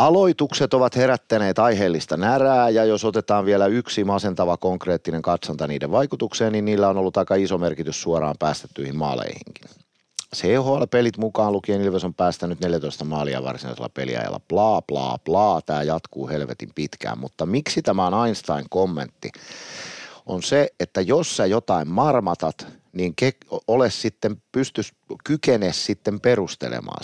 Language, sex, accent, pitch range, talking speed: Finnish, male, native, 80-110 Hz, 125 wpm